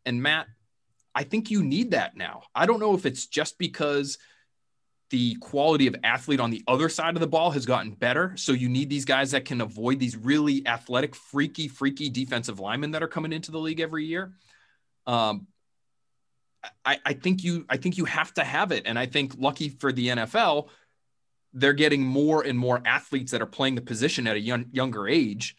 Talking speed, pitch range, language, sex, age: 200 wpm, 115-150 Hz, English, male, 30-49